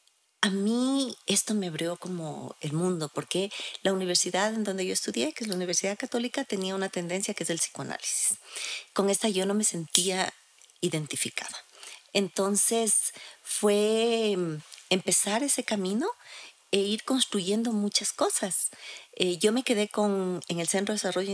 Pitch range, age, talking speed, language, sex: 180-215 Hz, 40-59, 150 wpm, Spanish, female